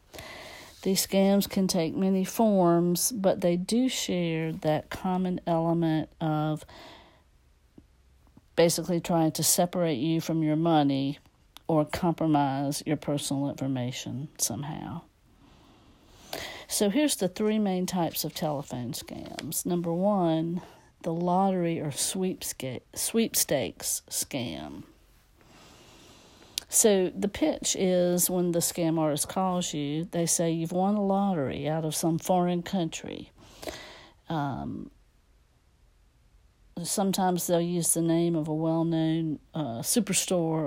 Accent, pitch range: American, 155-185 Hz